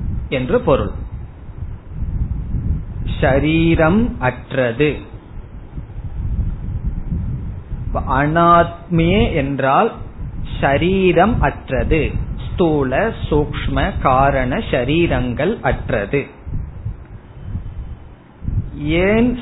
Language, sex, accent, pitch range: Tamil, male, native, 130-175 Hz